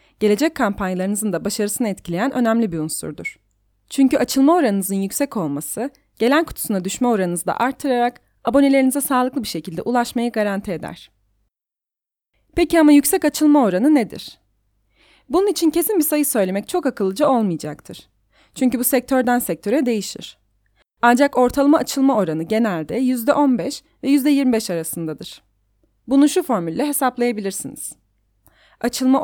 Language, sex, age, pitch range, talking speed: Turkish, female, 30-49, 185-275 Hz, 125 wpm